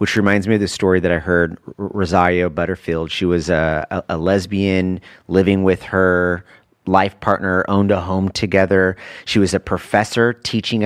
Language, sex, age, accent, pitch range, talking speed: English, male, 30-49, American, 90-110 Hz, 170 wpm